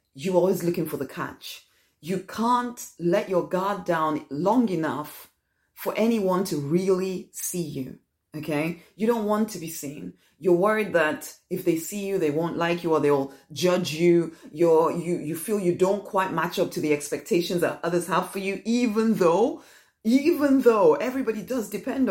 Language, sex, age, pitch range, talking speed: English, female, 30-49, 165-220 Hz, 180 wpm